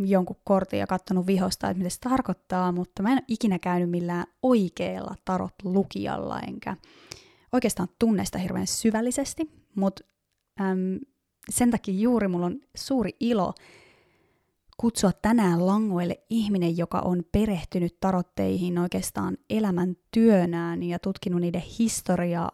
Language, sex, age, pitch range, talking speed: Finnish, female, 20-39, 175-220 Hz, 125 wpm